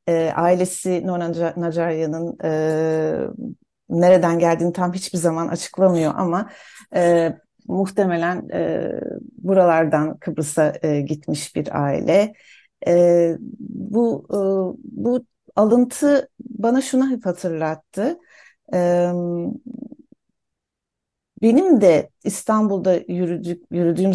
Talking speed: 85 wpm